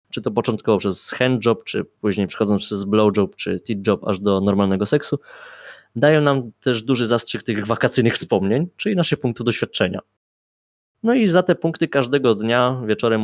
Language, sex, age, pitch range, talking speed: Polish, male, 20-39, 105-130 Hz, 165 wpm